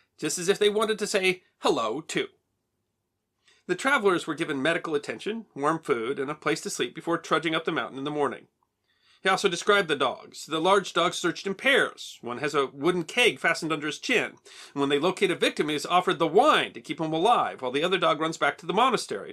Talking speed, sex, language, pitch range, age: 225 wpm, male, English, 150-205 Hz, 40-59